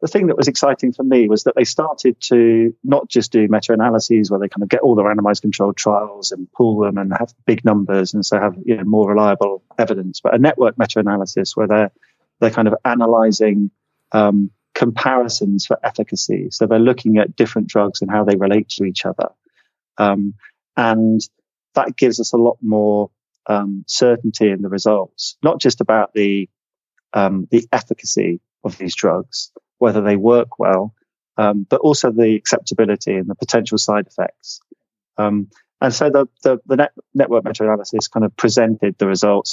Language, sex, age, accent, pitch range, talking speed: English, male, 30-49, British, 100-120 Hz, 180 wpm